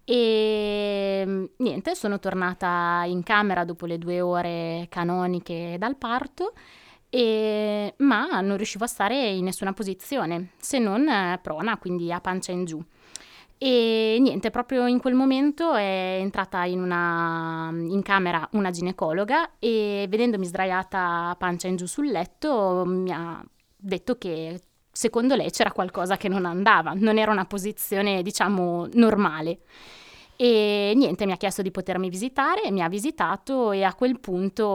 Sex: female